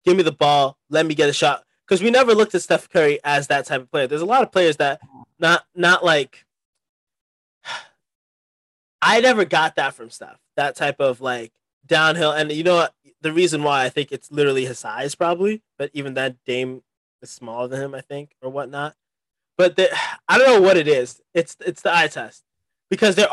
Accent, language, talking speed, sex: American, English, 215 wpm, male